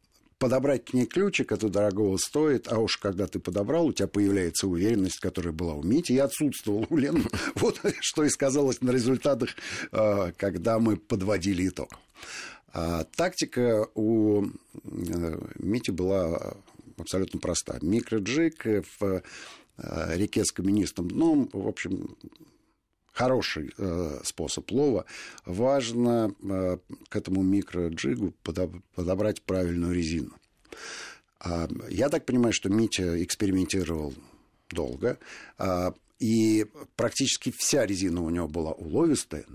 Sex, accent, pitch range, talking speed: male, native, 85-115 Hz, 120 wpm